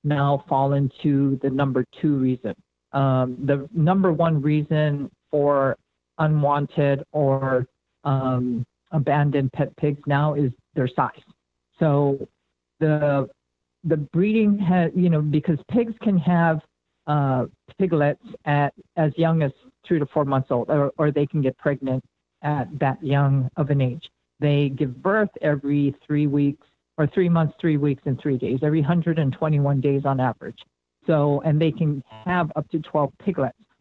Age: 50-69